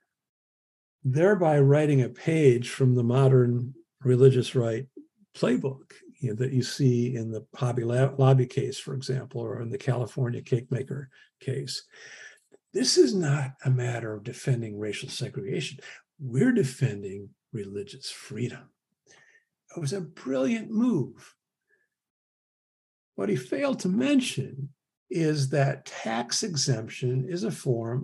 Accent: American